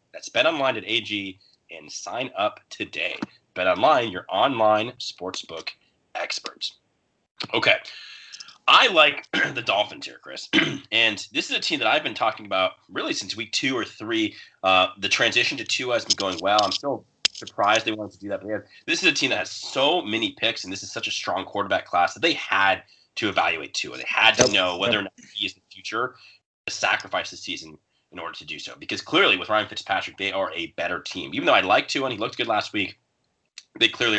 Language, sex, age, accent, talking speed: English, male, 30-49, American, 210 wpm